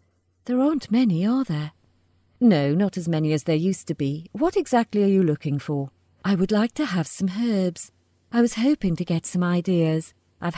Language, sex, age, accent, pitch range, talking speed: English, female, 40-59, British, 155-225 Hz, 200 wpm